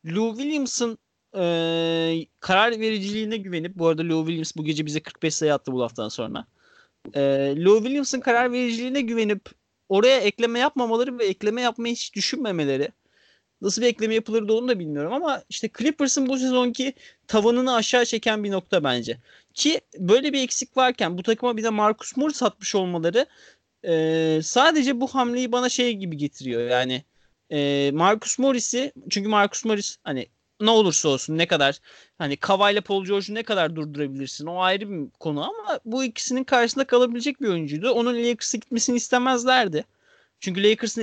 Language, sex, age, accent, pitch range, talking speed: Turkish, male, 30-49, native, 165-245 Hz, 155 wpm